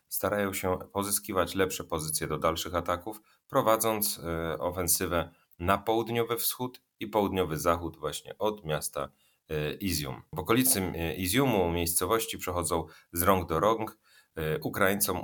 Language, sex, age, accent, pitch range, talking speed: Polish, male, 30-49, native, 80-100 Hz, 120 wpm